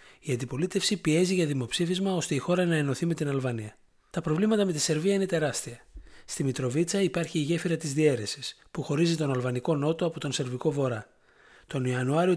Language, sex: Greek, male